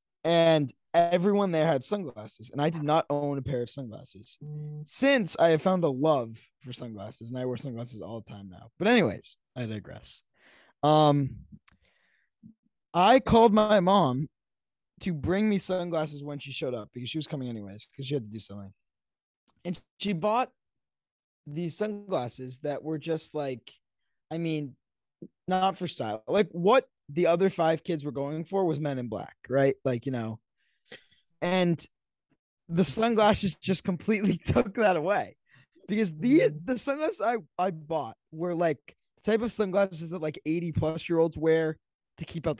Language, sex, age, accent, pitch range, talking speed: English, male, 20-39, American, 130-185 Hz, 170 wpm